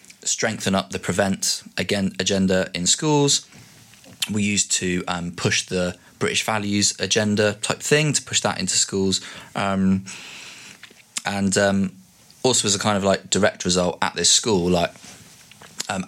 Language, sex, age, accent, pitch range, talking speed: English, male, 20-39, British, 90-110 Hz, 150 wpm